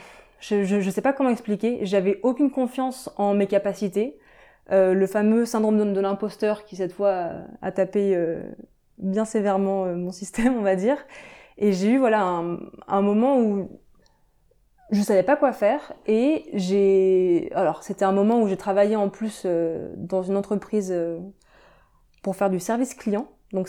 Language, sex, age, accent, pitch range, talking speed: French, female, 20-39, French, 190-235 Hz, 175 wpm